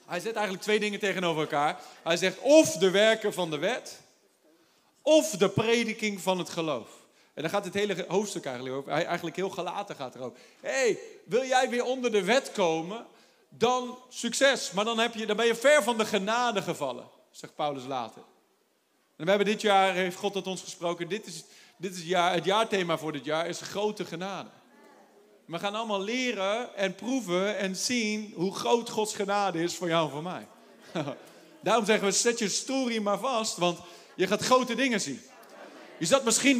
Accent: Dutch